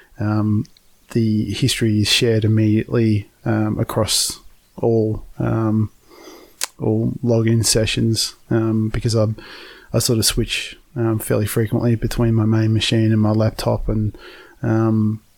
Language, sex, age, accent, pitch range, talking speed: English, male, 20-39, Australian, 110-120 Hz, 125 wpm